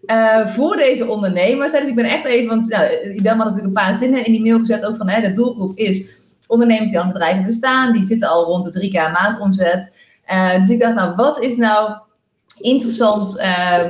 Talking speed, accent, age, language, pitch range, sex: 225 wpm, Dutch, 20-39, Dutch, 205-255 Hz, female